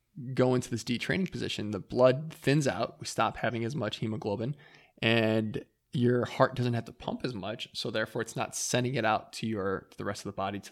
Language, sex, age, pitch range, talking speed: English, male, 20-39, 110-125 Hz, 220 wpm